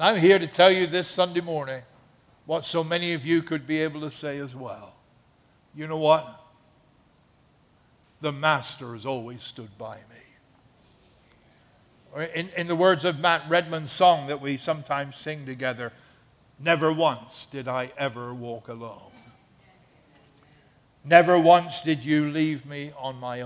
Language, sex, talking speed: English, male, 150 wpm